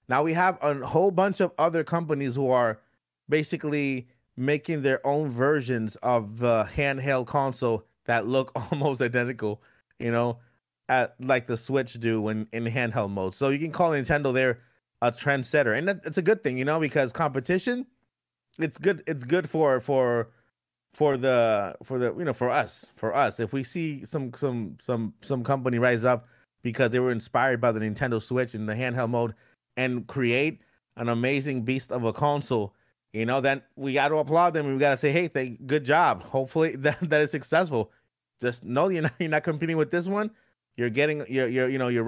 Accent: American